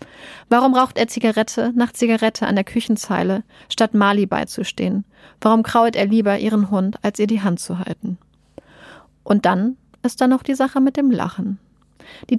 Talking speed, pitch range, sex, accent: 170 wpm, 195-230 Hz, female, German